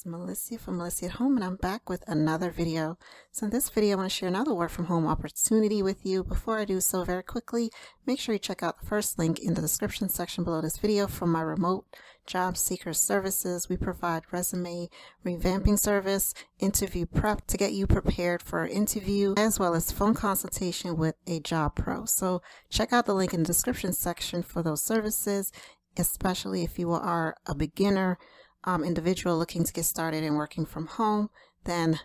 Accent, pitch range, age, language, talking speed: American, 170-205 Hz, 40-59, English, 195 wpm